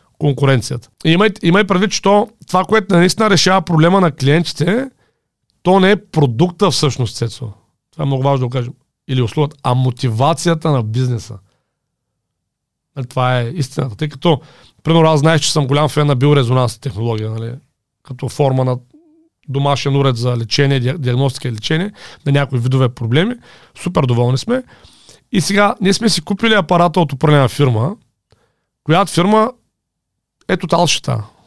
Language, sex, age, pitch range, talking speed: Bulgarian, male, 40-59, 130-185 Hz, 150 wpm